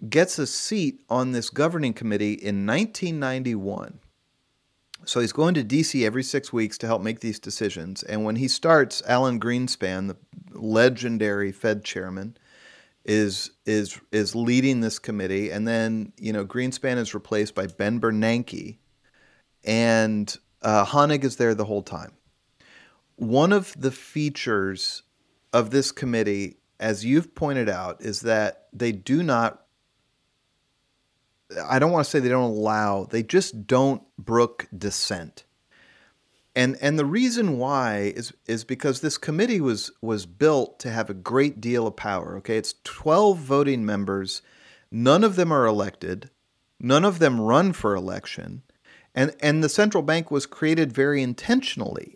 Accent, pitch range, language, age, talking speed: American, 105-145 Hz, English, 30-49, 150 wpm